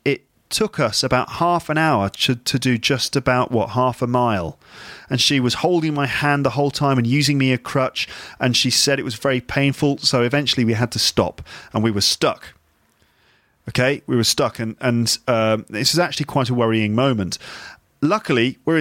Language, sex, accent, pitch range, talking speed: English, male, British, 115-145 Hz, 200 wpm